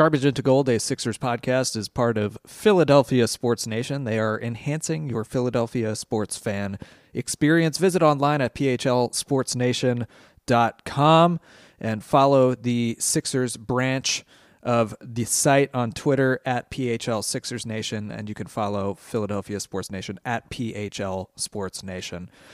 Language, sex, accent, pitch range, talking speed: English, male, American, 115-140 Hz, 125 wpm